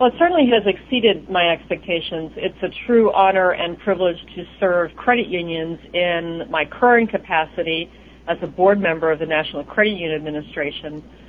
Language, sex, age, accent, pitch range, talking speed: English, female, 40-59, American, 160-190 Hz, 165 wpm